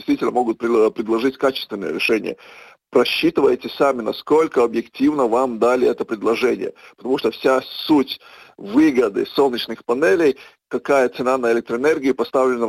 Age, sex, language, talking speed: 40-59, male, Russian, 120 wpm